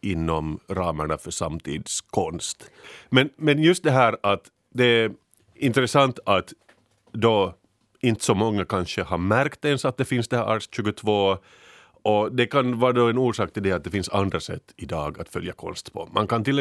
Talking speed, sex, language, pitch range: 190 wpm, male, Swedish, 90-115 Hz